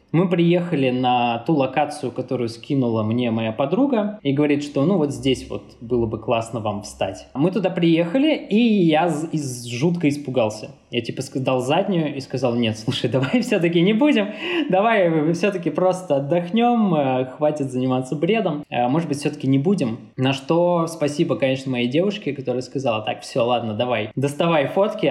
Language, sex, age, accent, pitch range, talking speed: Russian, male, 20-39, native, 125-165 Hz, 160 wpm